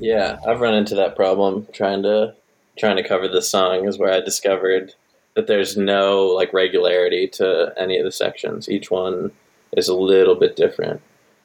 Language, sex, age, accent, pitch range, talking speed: English, male, 20-39, American, 95-125 Hz, 180 wpm